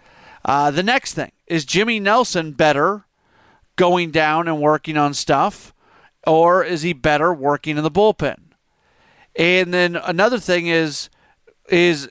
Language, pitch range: English, 155-195 Hz